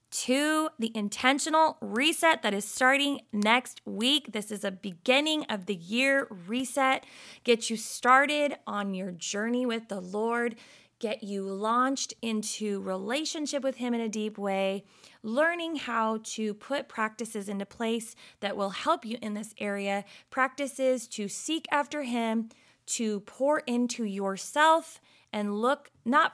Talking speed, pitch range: 145 wpm, 210-275 Hz